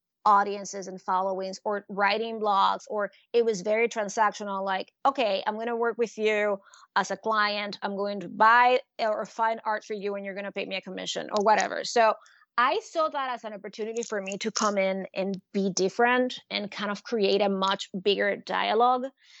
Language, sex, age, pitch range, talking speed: English, female, 20-39, 200-230 Hz, 200 wpm